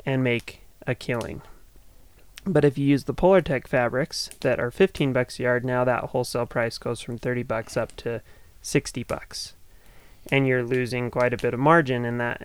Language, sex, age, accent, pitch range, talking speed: English, male, 20-39, American, 120-135 Hz, 190 wpm